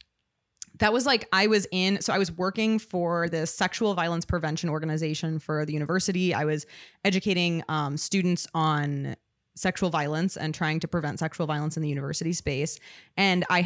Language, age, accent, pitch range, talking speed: English, 20-39, American, 155-185 Hz, 170 wpm